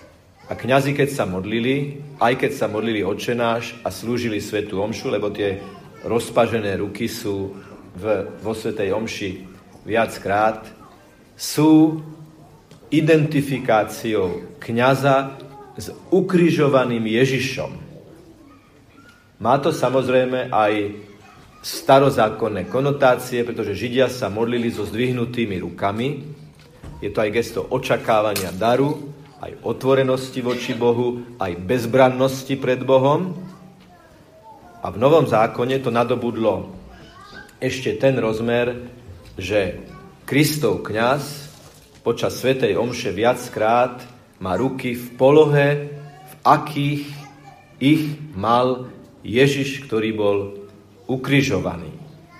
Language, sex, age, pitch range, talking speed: Slovak, male, 40-59, 110-140 Hz, 95 wpm